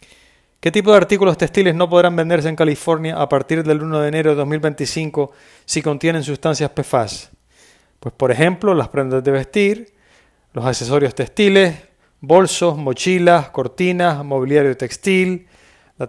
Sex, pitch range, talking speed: male, 135-180 Hz, 140 wpm